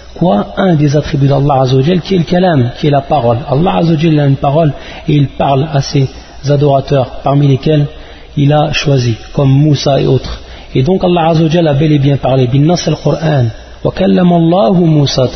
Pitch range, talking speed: 130-165 Hz, 185 wpm